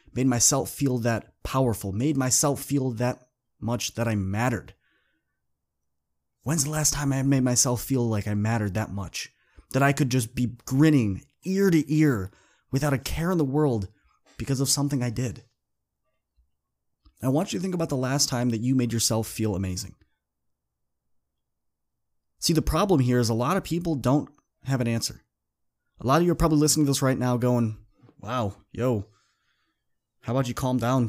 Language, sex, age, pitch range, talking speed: English, male, 20-39, 110-145 Hz, 180 wpm